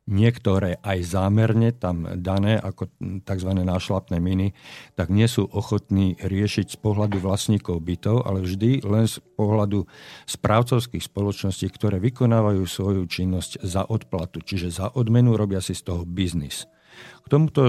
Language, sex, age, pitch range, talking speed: Slovak, male, 50-69, 95-110 Hz, 140 wpm